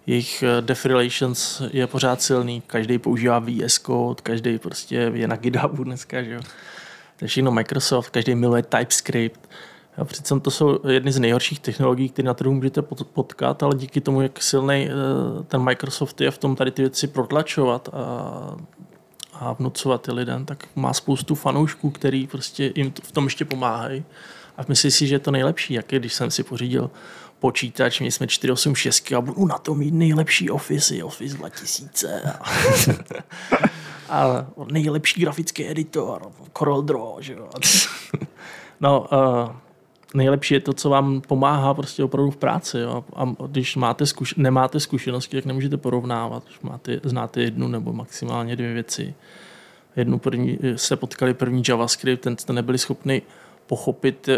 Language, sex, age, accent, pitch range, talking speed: Czech, male, 20-39, native, 125-140 Hz, 150 wpm